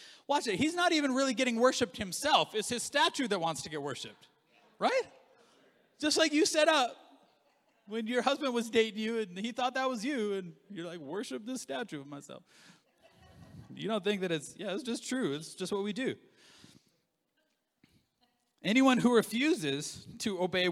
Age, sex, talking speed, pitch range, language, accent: 30-49, male, 180 wpm, 160-225 Hz, English, American